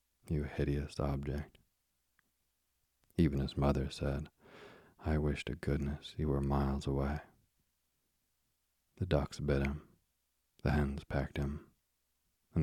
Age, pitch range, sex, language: 40-59, 65-70 Hz, male, English